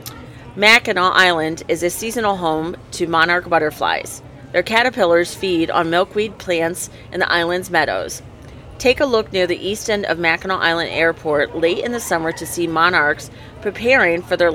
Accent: American